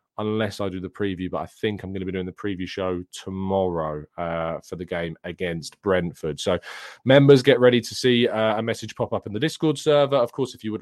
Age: 20-39